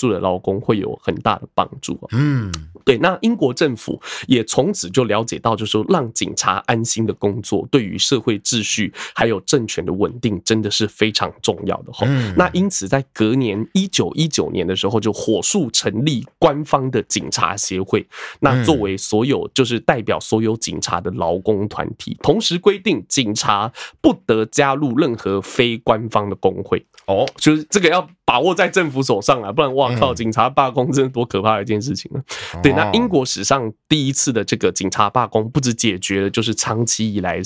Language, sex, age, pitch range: Chinese, male, 20-39, 105-135 Hz